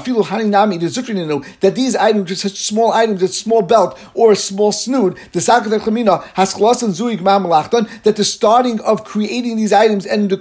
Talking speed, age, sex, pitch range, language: 135 wpm, 50-69, male, 200-230 Hz, English